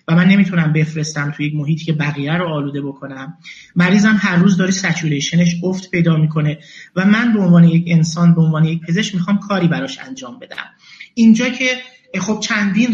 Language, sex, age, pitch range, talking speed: Persian, male, 30-49, 165-210 Hz, 180 wpm